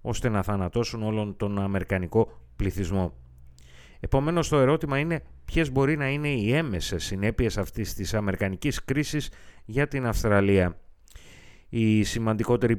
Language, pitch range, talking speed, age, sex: Greek, 95-120 Hz, 125 wpm, 30-49, male